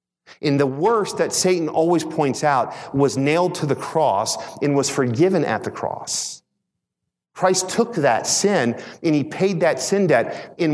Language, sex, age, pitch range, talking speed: English, male, 40-59, 120-165 Hz, 170 wpm